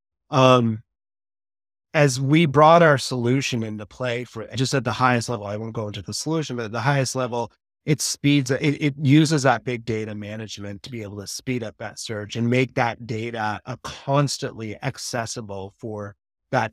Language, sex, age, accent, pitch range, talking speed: English, male, 30-49, American, 110-140 Hz, 185 wpm